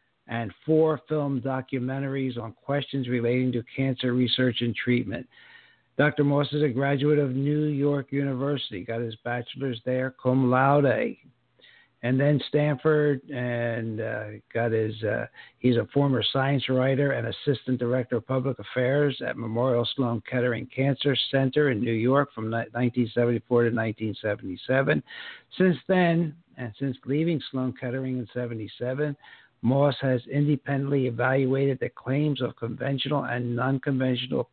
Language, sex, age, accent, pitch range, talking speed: English, male, 60-79, American, 120-140 Hz, 135 wpm